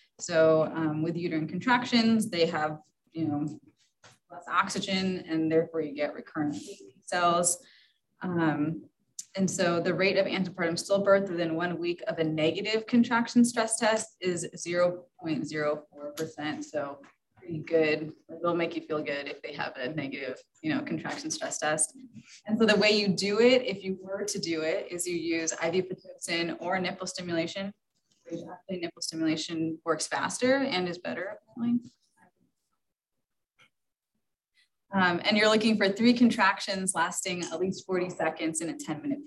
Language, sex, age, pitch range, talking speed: English, female, 20-39, 160-210 Hz, 155 wpm